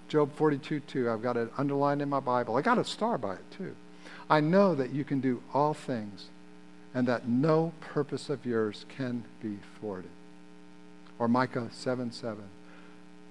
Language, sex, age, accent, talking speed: English, male, 50-69, American, 160 wpm